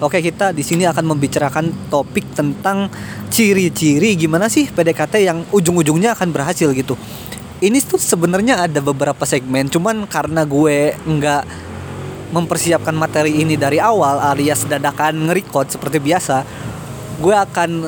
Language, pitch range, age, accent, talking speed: Indonesian, 140-175 Hz, 20-39, native, 135 wpm